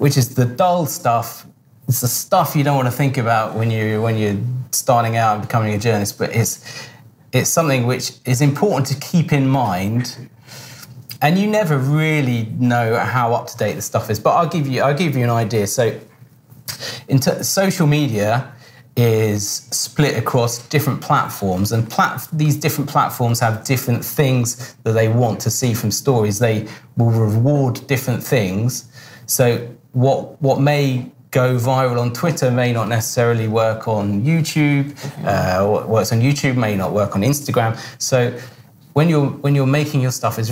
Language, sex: Russian, male